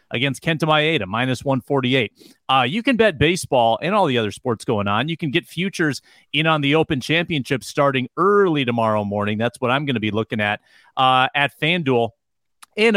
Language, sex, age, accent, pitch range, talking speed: English, male, 30-49, American, 130-175 Hz, 200 wpm